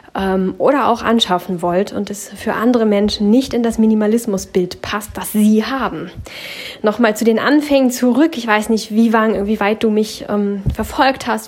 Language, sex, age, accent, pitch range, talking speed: German, female, 10-29, German, 200-250 Hz, 180 wpm